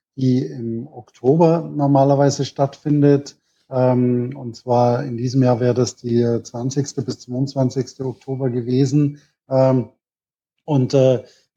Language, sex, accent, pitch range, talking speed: German, male, German, 130-145 Hz, 115 wpm